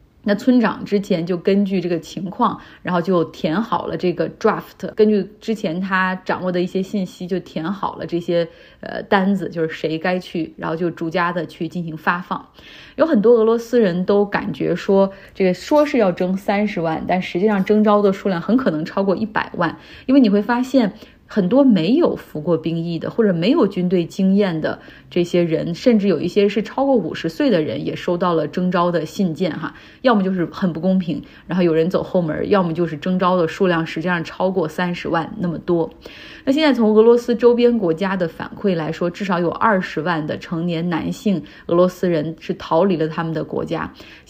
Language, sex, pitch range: Chinese, female, 170-205 Hz